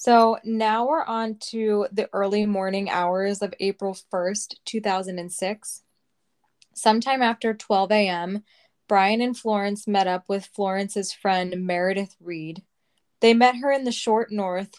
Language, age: English, 10-29